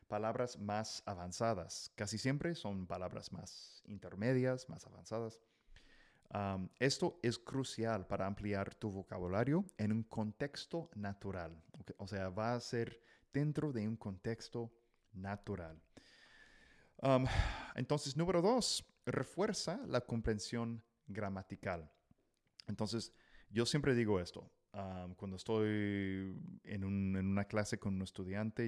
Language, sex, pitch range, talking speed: English, male, 100-125 Hz, 115 wpm